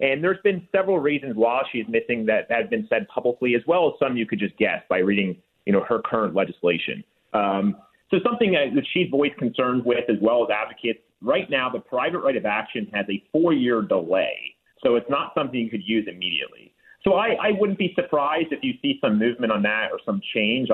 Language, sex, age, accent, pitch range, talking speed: English, male, 30-49, American, 105-155 Hz, 225 wpm